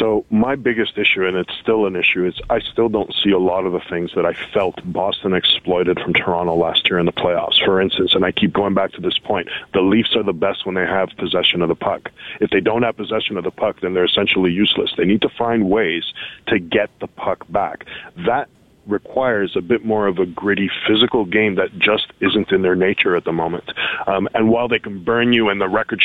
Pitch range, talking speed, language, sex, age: 100-115 Hz, 240 wpm, English, male, 40-59